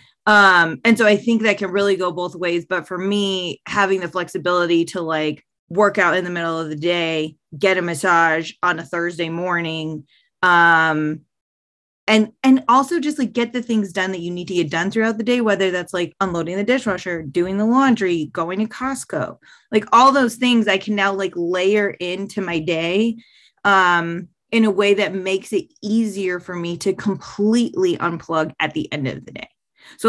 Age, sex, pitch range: 20-39, female, 170-210 Hz